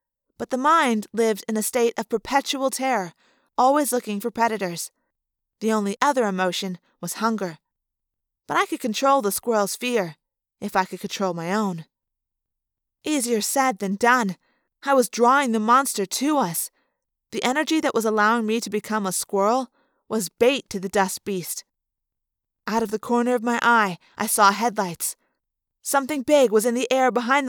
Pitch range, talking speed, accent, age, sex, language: 210-265 Hz, 170 wpm, American, 20-39, female, English